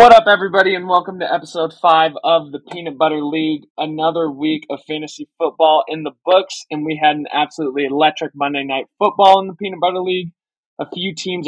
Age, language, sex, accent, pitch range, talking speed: 20-39, English, male, American, 150-180 Hz, 200 wpm